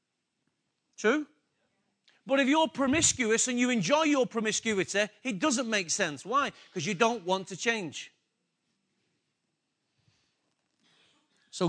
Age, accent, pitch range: 40-59, British, 190-240 Hz